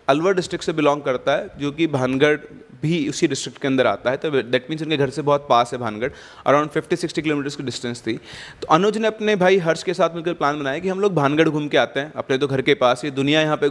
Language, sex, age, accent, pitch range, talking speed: Hindi, male, 30-49, native, 140-175 Hz, 265 wpm